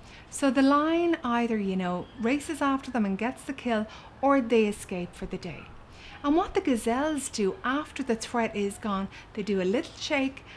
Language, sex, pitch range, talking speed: English, female, 210-275 Hz, 195 wpm